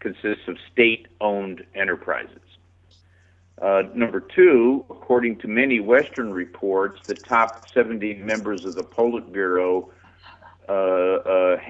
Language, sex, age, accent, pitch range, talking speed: English, male, 50-69, American, 90-110 Hz, 110 wpm